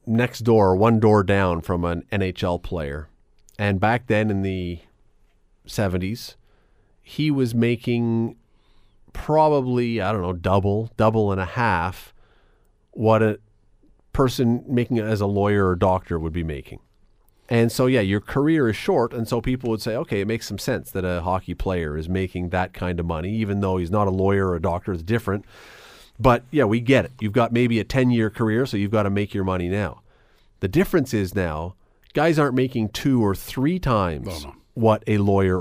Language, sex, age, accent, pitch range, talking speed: English, male, 40-59, American, 95-125 Hz, 190 wpm